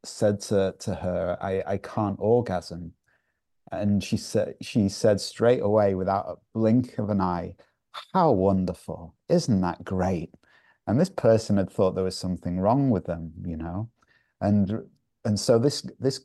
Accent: British